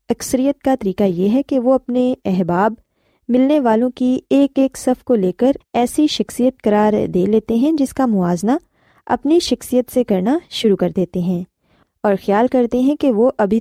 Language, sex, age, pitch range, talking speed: Urdu, female, 20-39, 195-260 Hz, 185 wpm